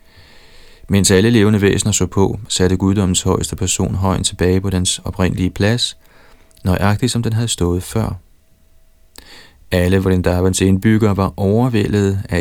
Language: Danish